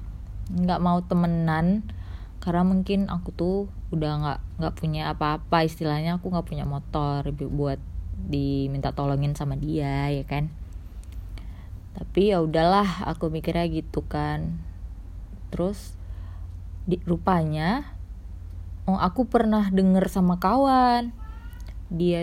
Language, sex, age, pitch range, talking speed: Indonesian, female, 20-39, 140-195 Hz, 110 wpm